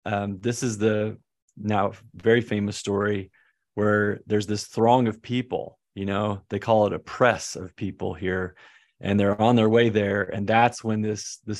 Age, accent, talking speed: 30-49, American, 180 wpm